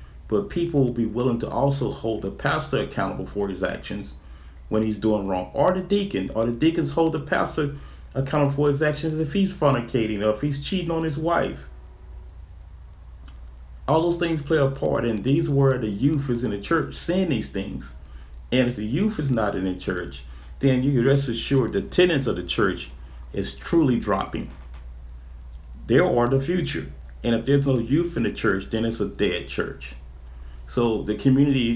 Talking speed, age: 190 wpm, 40-59